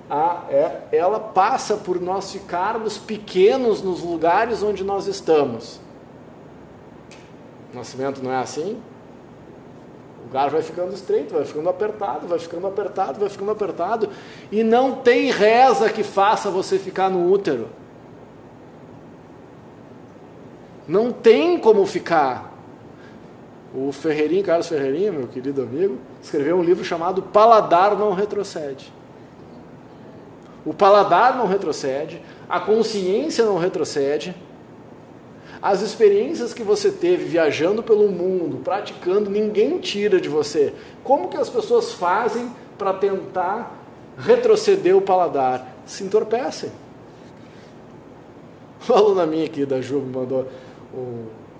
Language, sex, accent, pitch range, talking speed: Portuguese, male, Brazilian, 170-245 Hz, 115 wpm